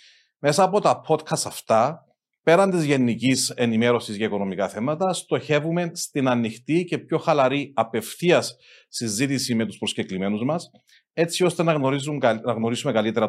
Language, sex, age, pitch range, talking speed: Greek, male, 40-59, 115-160 Hz, 130 wpm